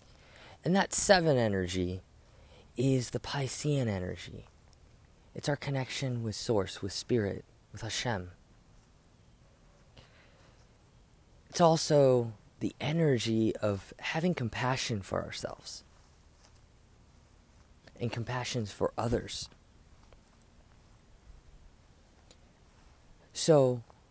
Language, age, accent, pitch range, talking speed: English, 20-39, American, 85-125 Hz, 75 wpm